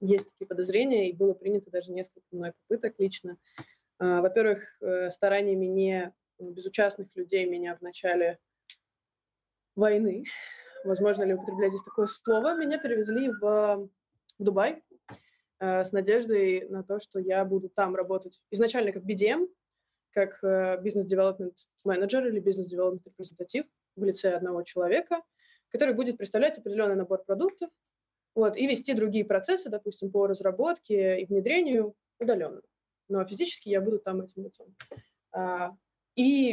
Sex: female